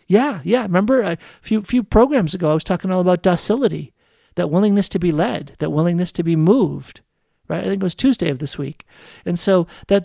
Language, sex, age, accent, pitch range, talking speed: English, male, 50-69, American, 170-235 Hz, 215 wpm